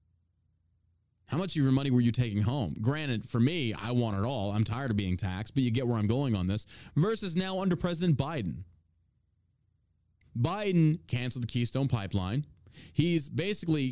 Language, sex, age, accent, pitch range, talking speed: English, male, 30-49, American, 95-145 Hz, 175 wpm